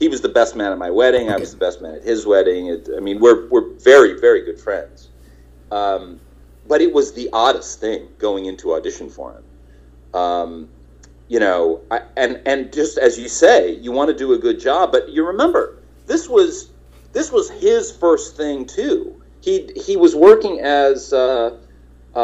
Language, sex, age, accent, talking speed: English, male, 40-59, American, 195 wpm